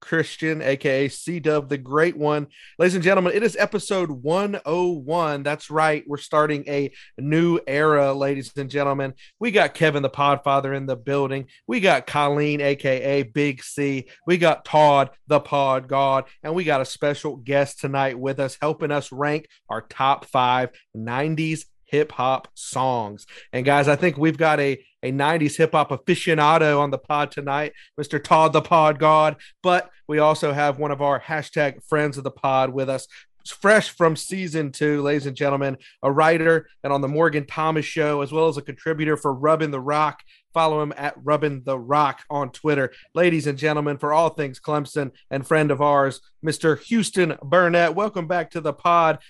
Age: 30-49